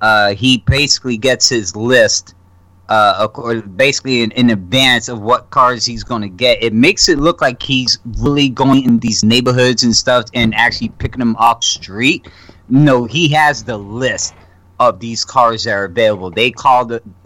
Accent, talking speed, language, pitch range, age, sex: American, 180 wpm, English, 110-135 Hz, 30-49, male